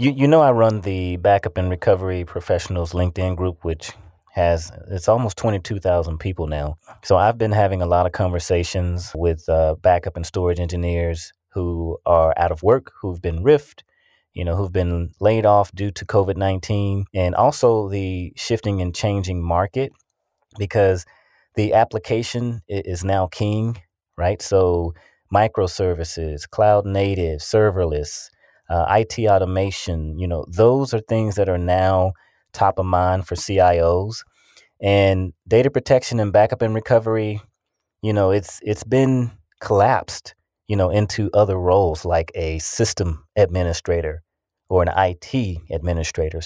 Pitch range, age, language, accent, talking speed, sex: 90-105 Hz, 30-49, English, American, 145 wpm, male